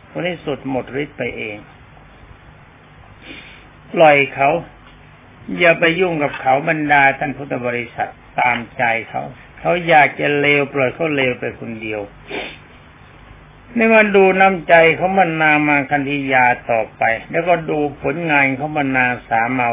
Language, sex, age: Thai, male, 60-79